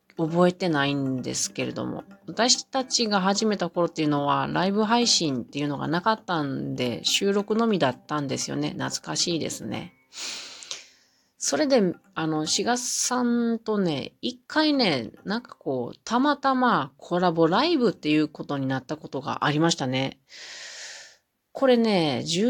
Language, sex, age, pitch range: Japanese, female, 30-49, 150-215 Hz